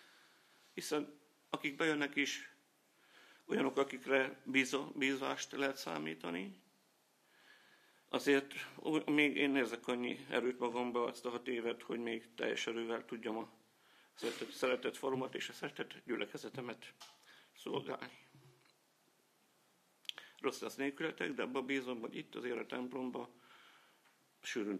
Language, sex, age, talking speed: Hungarian, male, 50-69, 110 wpm